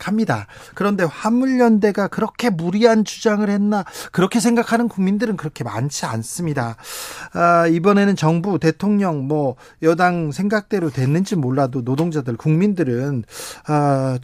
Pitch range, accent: 145-195 Hz, native